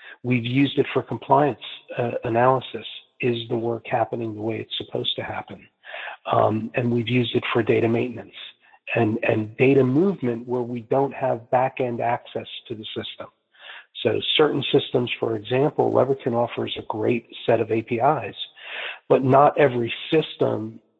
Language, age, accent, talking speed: English, 40-59, American, 155 wpm